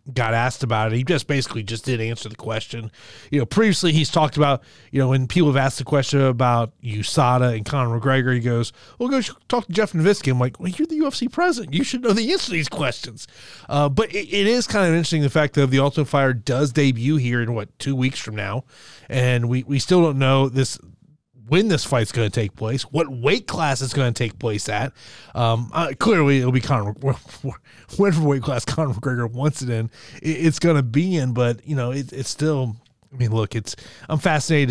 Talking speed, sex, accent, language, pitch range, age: 225 wpm, male, American, English, 120-155 Hz, 30-49